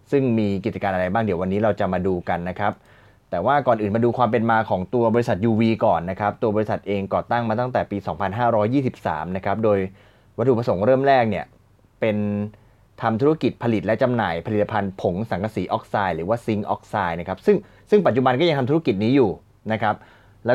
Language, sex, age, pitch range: Thai, male, 20-39, 100-125 Hz